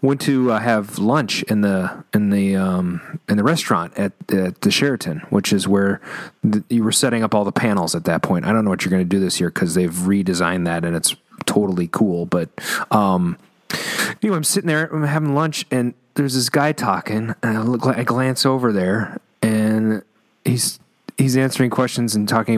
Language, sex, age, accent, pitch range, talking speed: English, male, 30-49, American, 95-130 Hz, 205 wpm